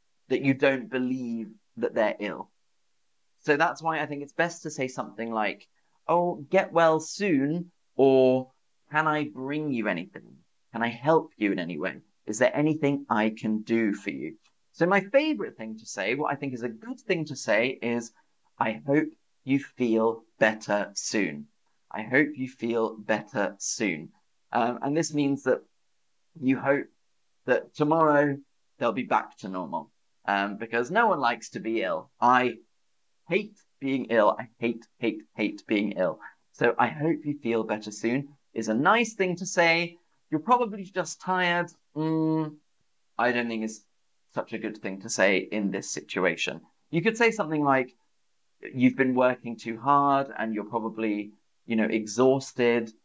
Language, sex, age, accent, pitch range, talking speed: English, male, 30-49, British, 115-155 Hz, 170 wpm